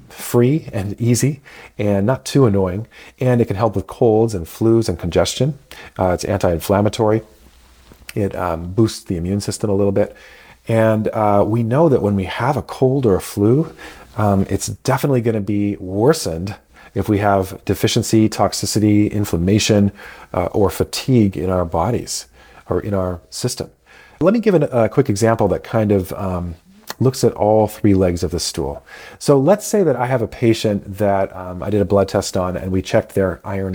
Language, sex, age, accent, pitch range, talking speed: English, male, 40-59, American, 95-115 Hz, 185 wpm